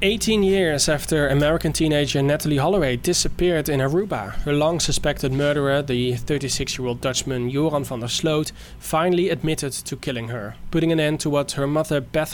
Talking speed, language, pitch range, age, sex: 160 wpm, English, 125-155 Hz, 20-39, male